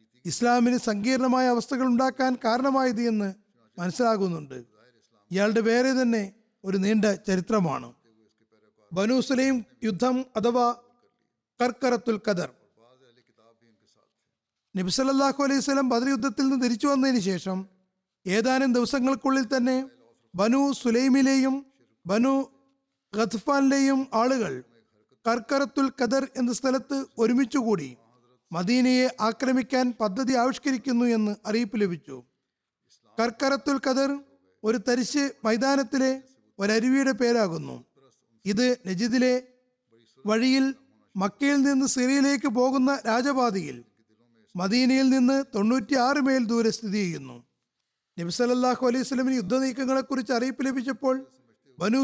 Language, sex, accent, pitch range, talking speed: Malayalam, male, native, 195-265 Hz, 85 wpm